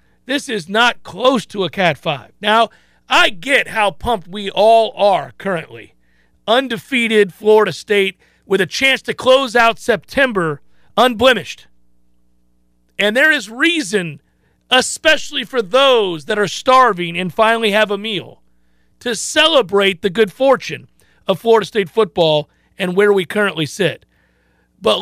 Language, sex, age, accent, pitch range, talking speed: English, male, 40-59, American, 160-235 Hz, 140 wpm